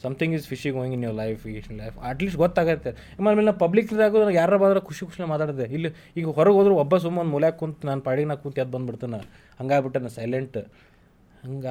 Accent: native